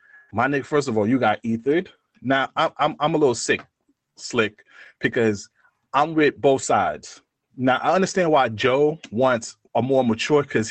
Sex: male